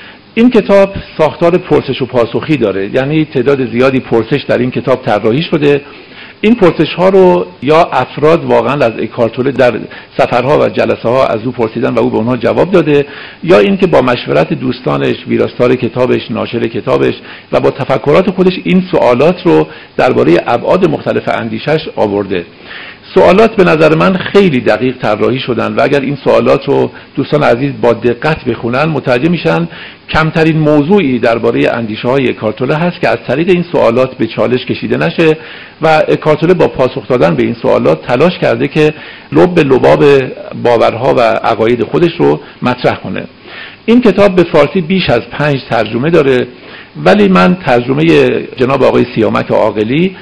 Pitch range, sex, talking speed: 120-170 Hz, male, 160 wpm